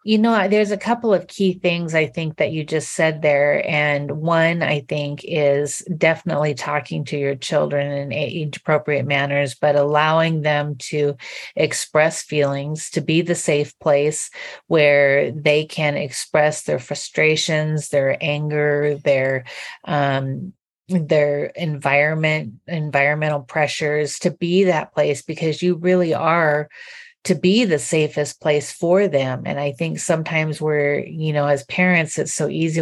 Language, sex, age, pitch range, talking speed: English, female, 40-59, 145-170 Hz, 145 wpm